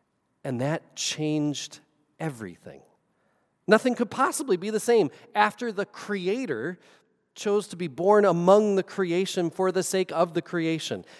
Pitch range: 170-225 Hz